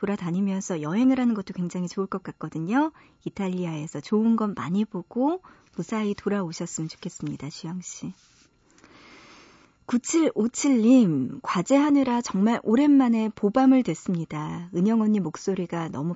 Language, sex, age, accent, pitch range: Korean, male, 40-59, native, 175-245 Hz